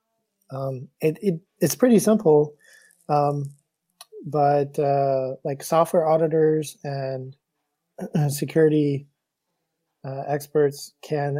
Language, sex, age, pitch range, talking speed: English, male, 20-39, 135-160 Hz, 90 wpm